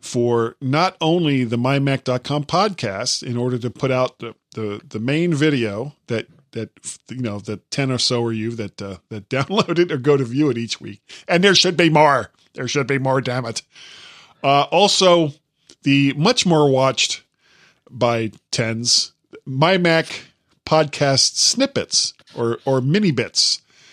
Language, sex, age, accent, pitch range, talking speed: English, male, 40-59, American, 115-150 Hz, 160 wpm